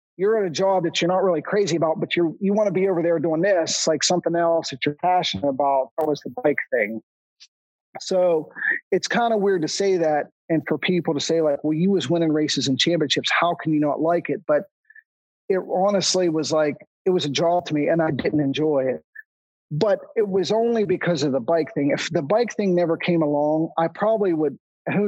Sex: male